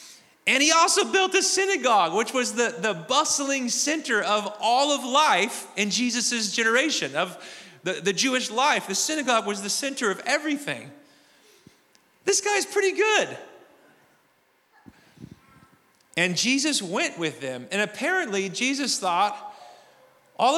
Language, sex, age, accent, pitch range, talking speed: English, male, 40-59, American, 175-255 Hz, 130 wpm